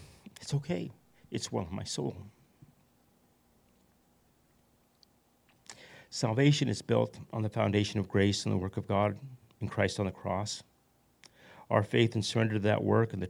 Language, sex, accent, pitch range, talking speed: English, male, American, 105-120 Hz, 155 wpm